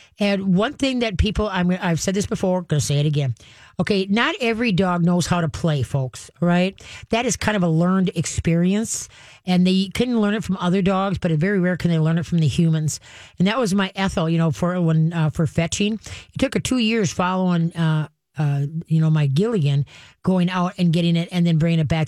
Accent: American